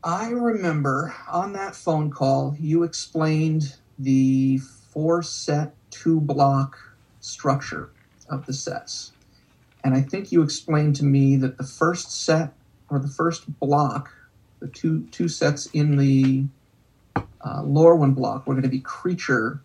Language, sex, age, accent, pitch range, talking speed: English, male, 50-69, American, 130-155 Hz, 145 wpm